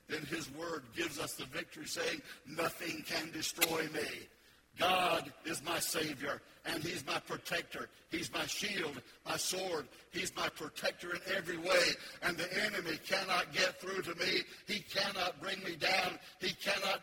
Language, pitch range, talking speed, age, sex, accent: English, 170-215 Hz, 160 wpm, 60-79, male, American